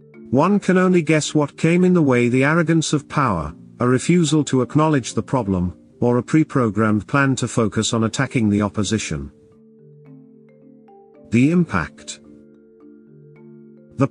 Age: 50-69